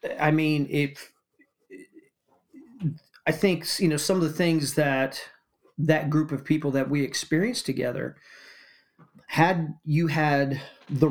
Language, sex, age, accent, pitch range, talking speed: English, male, 30-49, American, 140-165 Hz, 130 wpm